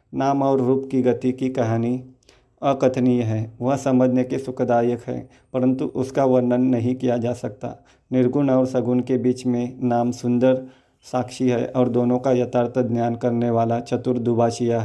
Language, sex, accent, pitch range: Hindi, male, native, 120-130 Hz